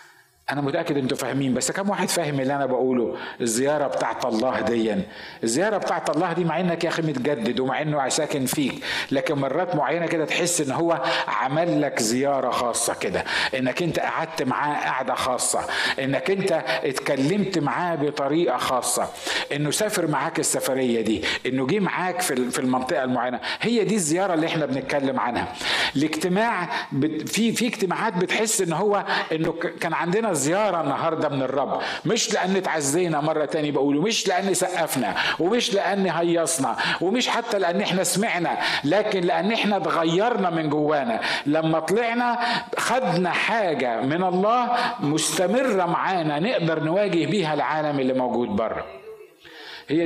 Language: Arabic